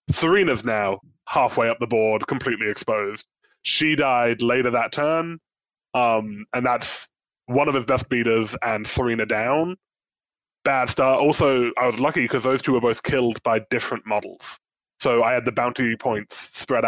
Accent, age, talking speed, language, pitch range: British, 20-39, 165 wpm, English, 110-125 Hz